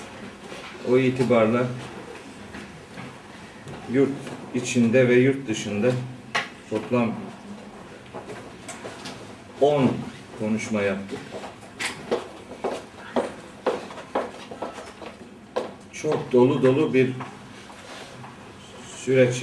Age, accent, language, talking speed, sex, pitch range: 50-69, native, Turkish, 50 wpm, male, 110-130 Hz